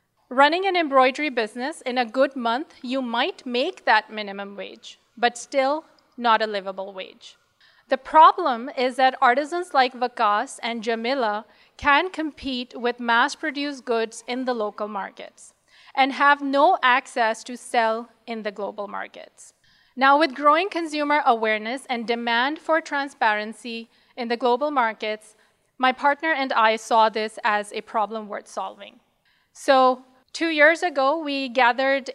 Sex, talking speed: female, 145 wpm